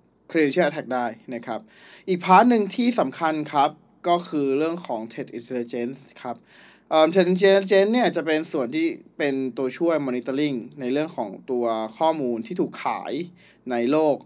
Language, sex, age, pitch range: Thai, male, 20-39, 130-170 Hz